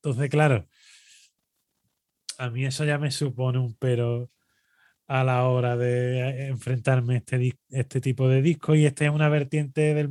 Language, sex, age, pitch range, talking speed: Spanish, male, 20-39, 120-145 Hz, 160 wpm